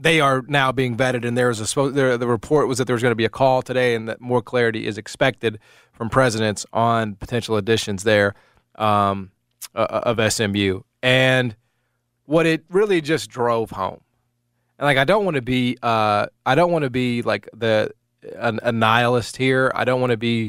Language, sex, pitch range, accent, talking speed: English, male, 115-135 Hz, American, 200 wpm